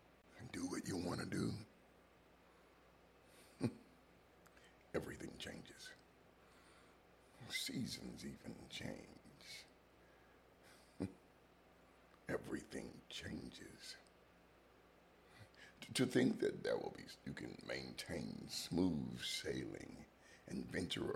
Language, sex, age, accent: English, male, 50-69, American